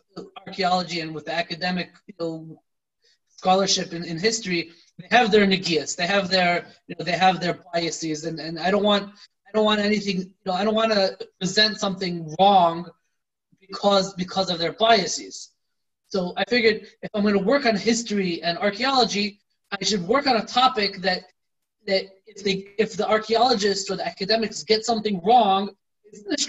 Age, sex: 20-39, male